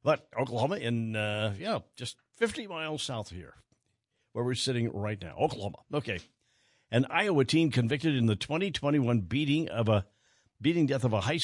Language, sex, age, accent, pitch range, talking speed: English, male, 60-79, American, 115-145 Hz, 155 wpm